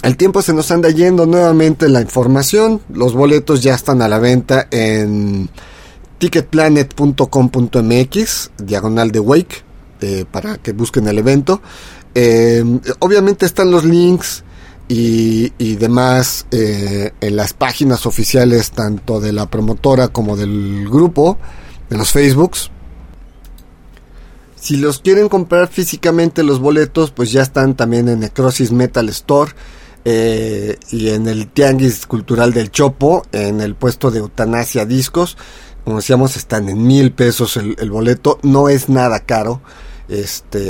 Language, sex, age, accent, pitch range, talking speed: Spanish, male, 40-59, Mexican, 110-145 Hz, 135 wpm